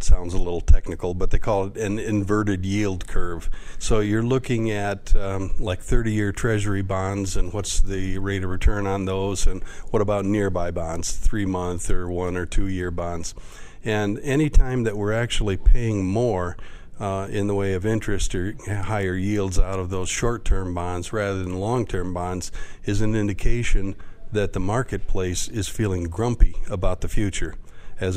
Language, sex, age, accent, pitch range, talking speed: English, male, 50-69, American, 90-105 Hz, 175 wpm